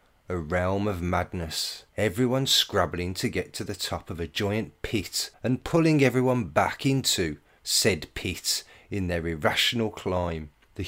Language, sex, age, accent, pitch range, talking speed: English, male, 30-49, British, 90-115 Hz, 150 wpm